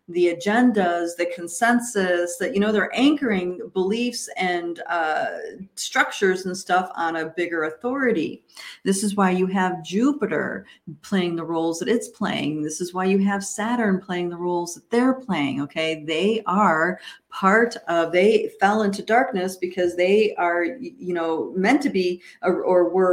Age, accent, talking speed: 50-69, American, 165 wpm